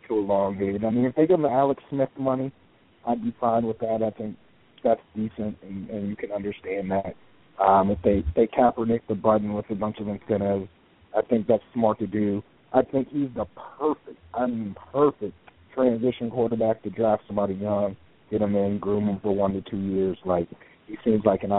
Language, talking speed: English, 210 wpm